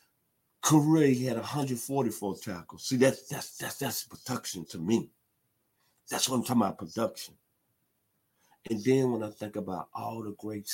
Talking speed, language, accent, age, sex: 155 wpm, English, American, 50-69, male